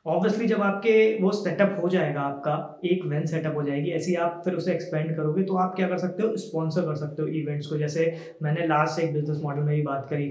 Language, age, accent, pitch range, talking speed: Hindi, 20-39, native, 155-190 Hz, 240 wpm